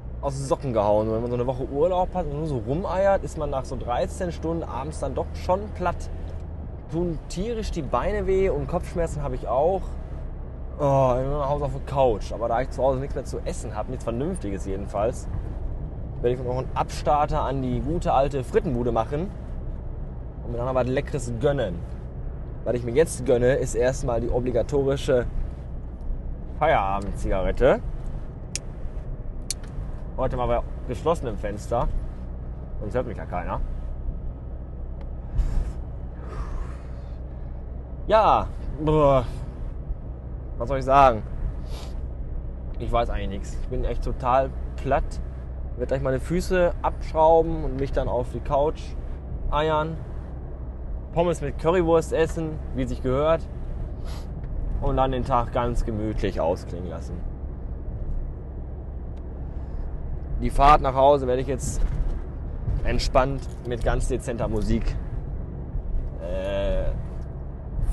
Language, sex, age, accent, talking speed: German, male, 20-39, German, 135 wpm